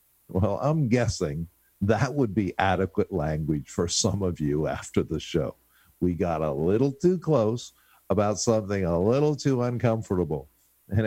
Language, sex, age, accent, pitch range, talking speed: English, male, 50-69, American, 95-145 Hz, 150 wpm